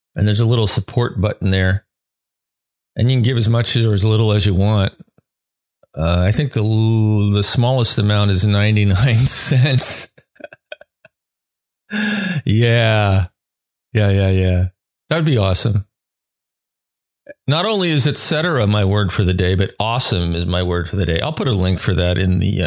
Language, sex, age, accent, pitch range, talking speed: English, male, 40-59, American, 100-125 Hz, 170 wpm